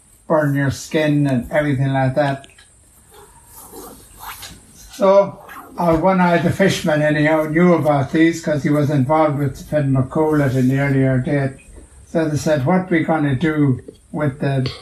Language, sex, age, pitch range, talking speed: English, male, 60-79, 130-155 Hz, 160 wpm